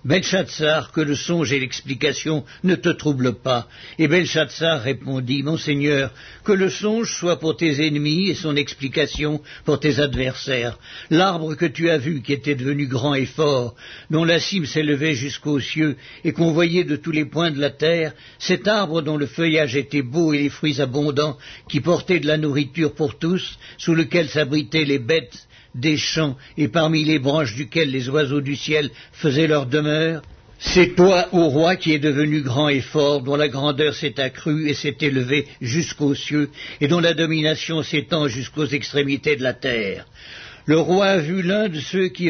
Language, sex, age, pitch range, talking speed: French, male, 60-79, 140-165 Hz, 185 wpm